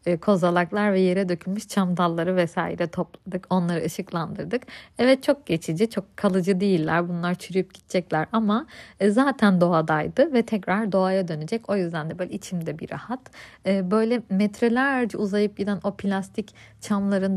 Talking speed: 140 wpm